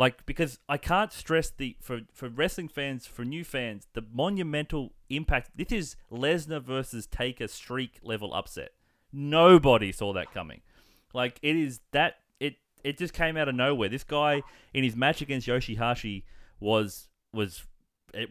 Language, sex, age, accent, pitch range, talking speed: English, male, 30-49, Australian, 115-145 Hz, 160 wpm